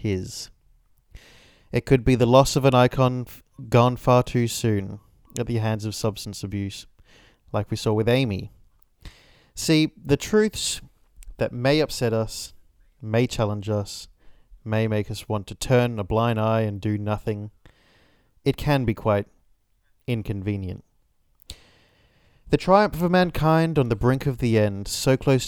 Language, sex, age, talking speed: English, male, 20-39, 150 wpm